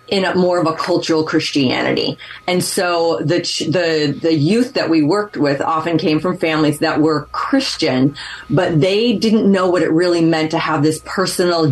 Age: 30-49